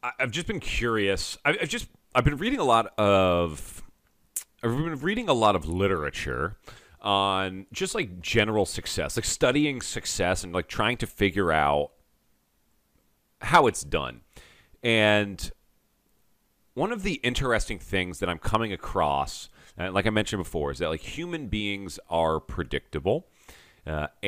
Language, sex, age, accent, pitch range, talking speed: English, male, 40-59, American, 85-105 Hz, 145 wpm